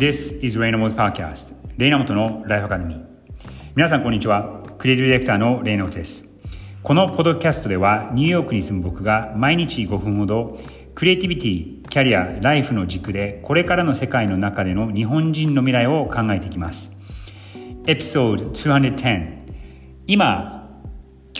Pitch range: 95-125 Hz